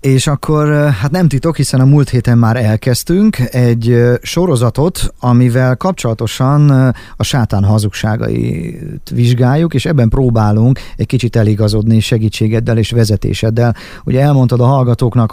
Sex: male